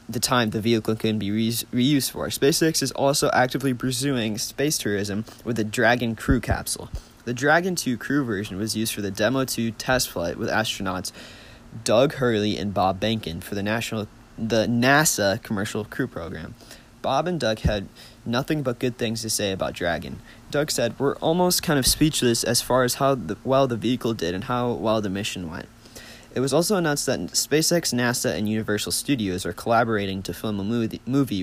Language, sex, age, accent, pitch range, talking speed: English, male, 20-39, American, 105-135 Hz, 185 wpm